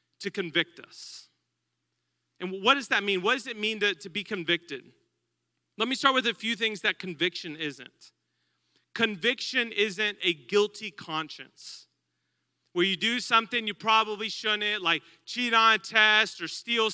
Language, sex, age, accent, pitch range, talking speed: English, male, 30-49, American, 175-225 Hz, 160 wpm